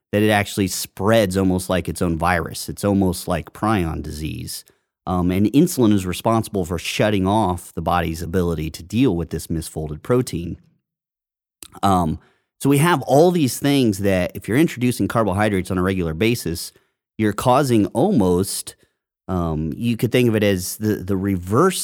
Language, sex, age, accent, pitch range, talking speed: English, male, 30-49, American, 85-105 Hz, 165 wpm